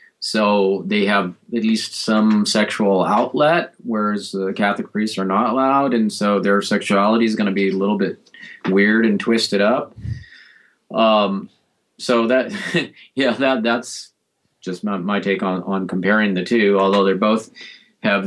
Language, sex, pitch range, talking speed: English, male, 100-125 Hz, 160 wpm